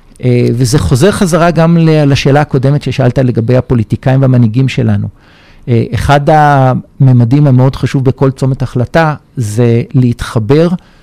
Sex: male